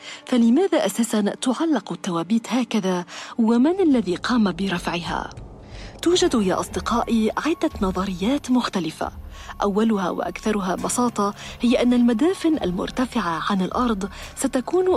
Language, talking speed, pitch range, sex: Arabic, 100 wpm, 200-260 Hz, female